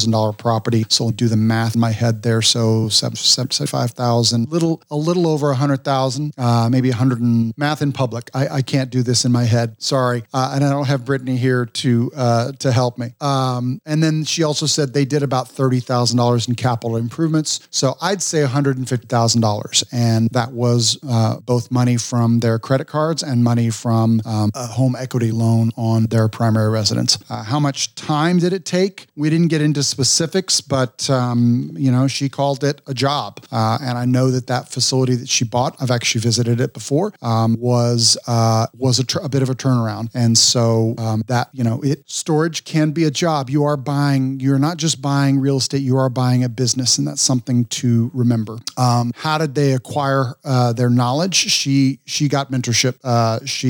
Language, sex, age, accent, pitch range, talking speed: English, male, 40-59, American, 120-140 Hz, 210 wpm